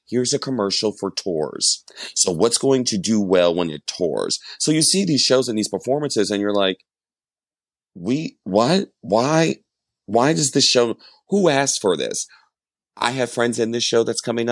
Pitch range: 100-125 Hz